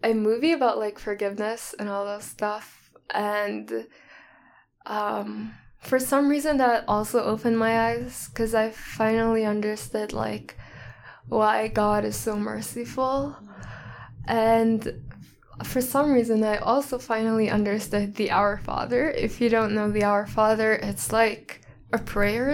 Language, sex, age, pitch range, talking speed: English, female, 10-29, 210-245 Hz, 140 wpm